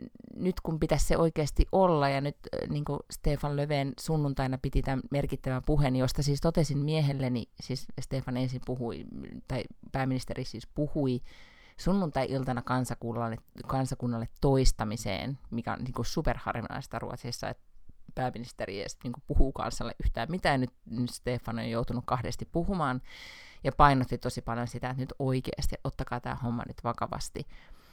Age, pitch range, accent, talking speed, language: 30-49, 120-145 Hz, native, 145 wpm, Finnish